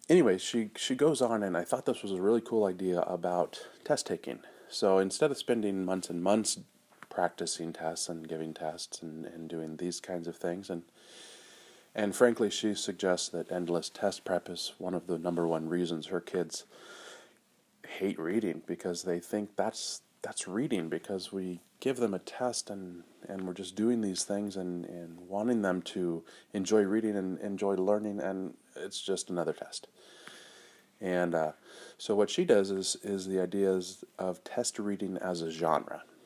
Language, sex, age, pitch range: English, male, 30-49, 85-100 Hz